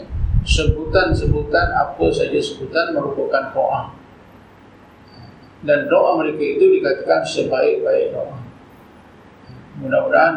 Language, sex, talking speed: Malay, male, 80 wpm